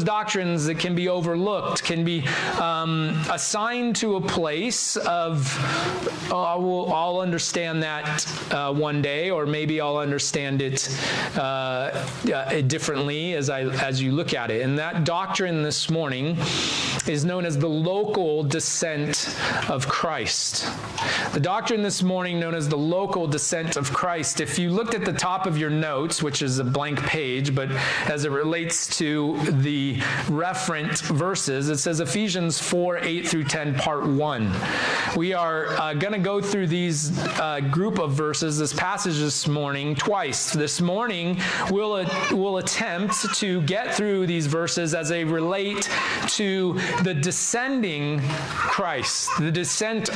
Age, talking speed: 30-49, 155 wpm